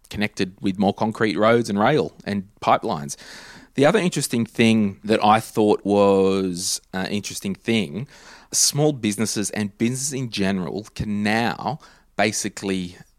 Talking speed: 130 wpm